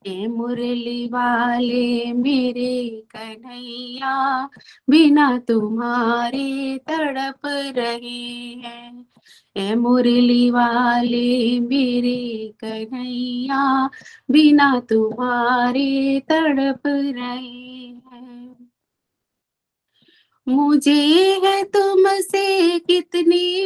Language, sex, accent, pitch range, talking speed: Hindi, female, native, 250-335 Hz, 55 wpm